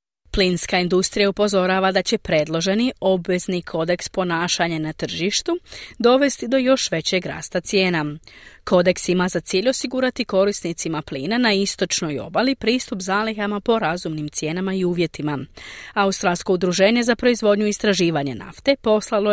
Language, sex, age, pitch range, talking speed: Croatian, female, 30-49, 170-230 Hz, 130 wpm